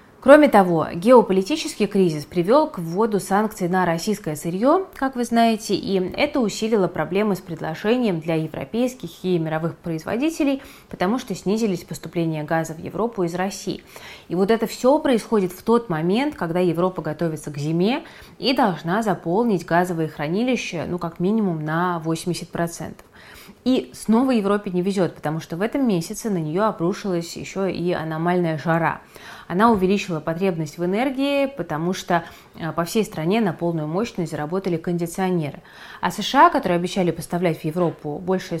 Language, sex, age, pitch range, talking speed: Russian, female, 20-39, 170-220 Hz, 150 wpm